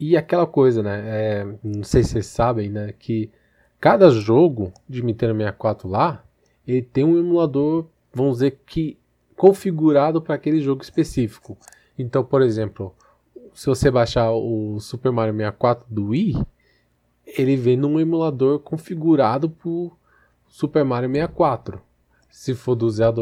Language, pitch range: Portuguese, 115-165 Hz